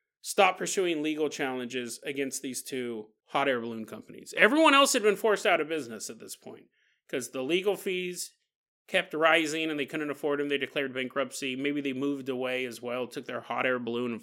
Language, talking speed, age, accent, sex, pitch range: English, 205 wpm, 30-49, American, male, 125-175 Hz